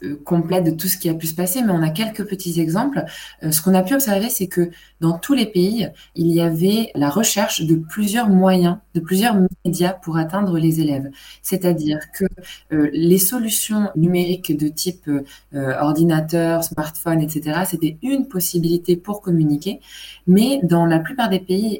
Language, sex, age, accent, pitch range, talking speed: French, female, 20-39, French, 155-190 Hz, 175 wpm